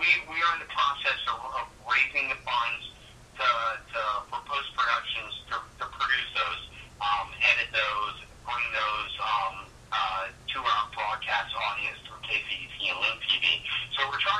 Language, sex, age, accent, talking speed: English, male, 50-69, American, 155 wpm